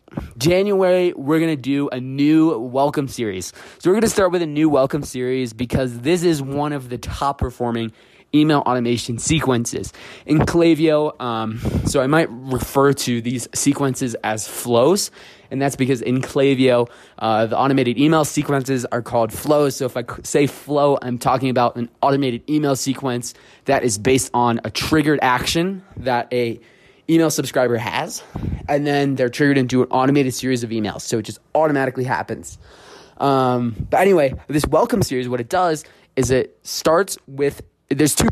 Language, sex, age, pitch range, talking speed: English, male, 20-39, 120-150 Hz, 170 wpm